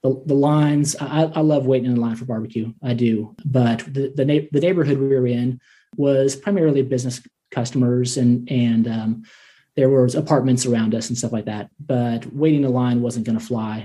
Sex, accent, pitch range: male, American, 125-150 Hz